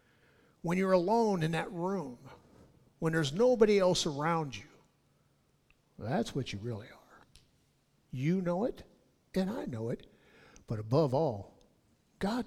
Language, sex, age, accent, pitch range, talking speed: English, male, 60-79, American, 120-180 Hz, 135 wpm